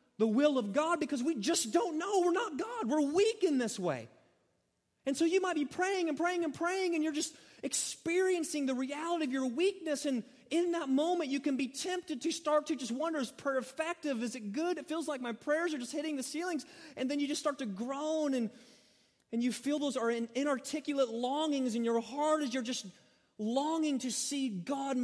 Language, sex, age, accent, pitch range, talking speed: English, male, 30-49, American, 185-290 Hz, 220 wpm